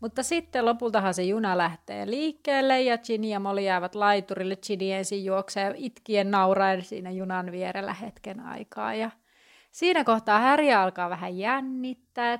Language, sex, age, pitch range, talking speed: Finnish, female, 30-49, 195-235 Hz, 145 wpm